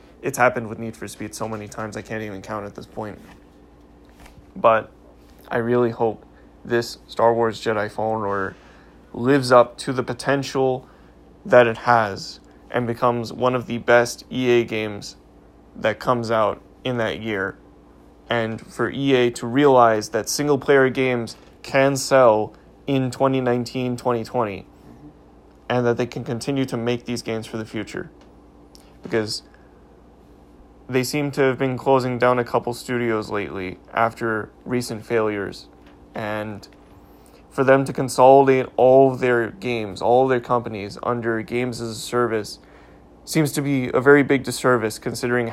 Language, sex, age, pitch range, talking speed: English, male, 20-39, 105-125 Hz, 145 wpm